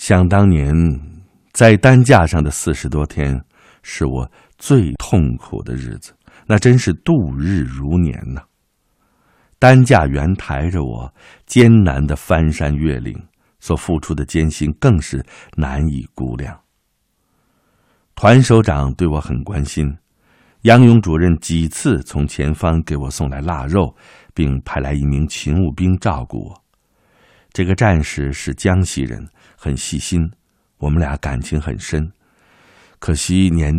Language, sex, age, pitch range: Chinese, male, 60-79, 70-100 Hz